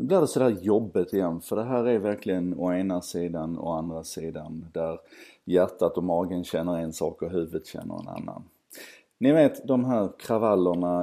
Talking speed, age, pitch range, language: 195 wpm, 30-49, 85-100 Hz, Swedish